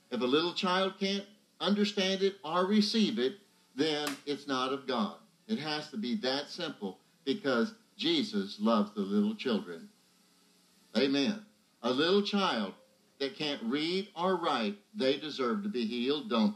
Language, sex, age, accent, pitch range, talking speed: English, male, 60-79, American, 170-215 Hz, 150 wpm